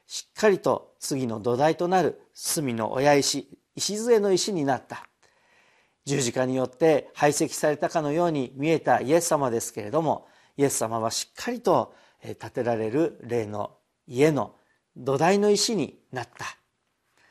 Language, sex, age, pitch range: Japanese, male, 50-69, 125-175 Hz